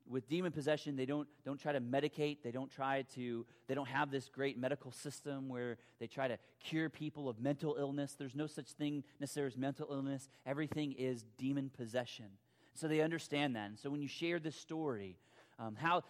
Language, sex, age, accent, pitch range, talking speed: English, male, 30-49, American, 120-150 Hz, 200 wpm